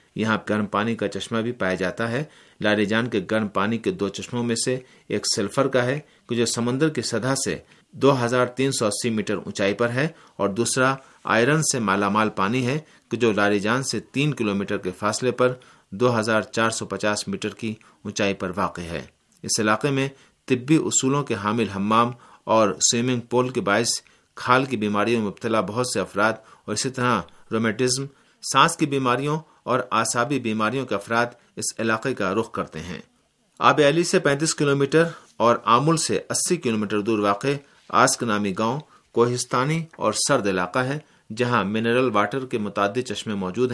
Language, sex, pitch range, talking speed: Urdu, male, 105-130 Hz, 180 wpm